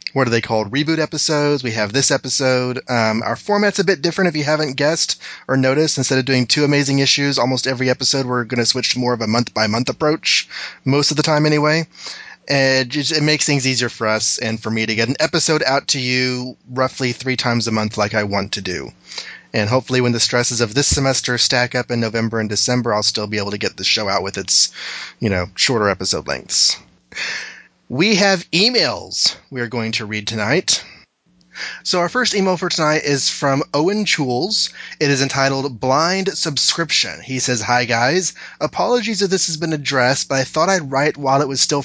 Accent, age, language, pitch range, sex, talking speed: American, 30-49, English, 120-150 Hz, male, 210 wpm